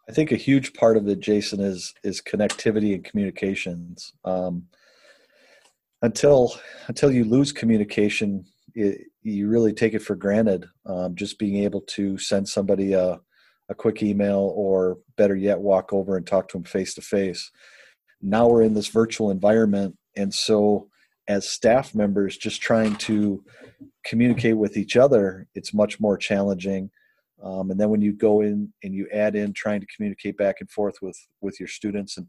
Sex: male